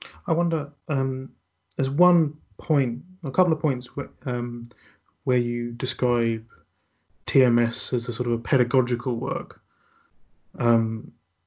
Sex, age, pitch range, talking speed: male, 30-49, 120-140 Hz, 125 wpm